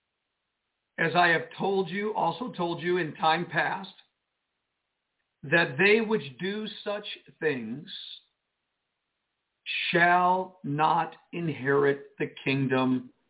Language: English